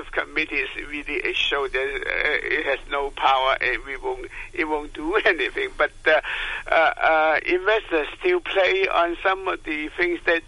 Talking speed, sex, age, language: 155 wpm, male, 60-79, English